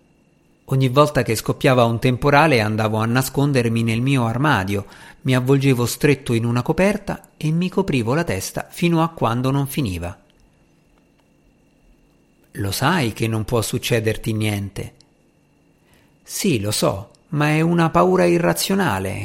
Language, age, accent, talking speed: Italian, 50-69, native, 135 wpm